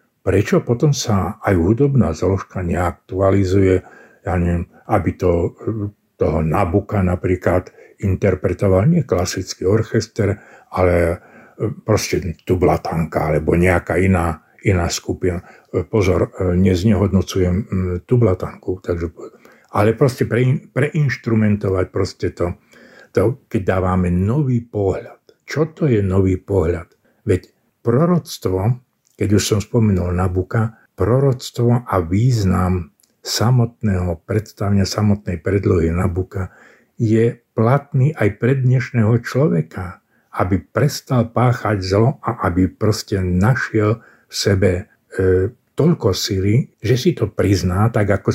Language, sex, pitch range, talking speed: Slovak, male, 95-115 Hz, 105 wpm